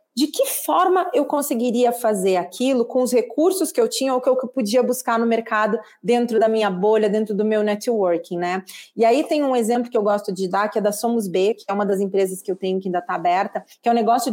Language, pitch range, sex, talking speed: Portuguese, 200-250 Hz, female, 250 wpm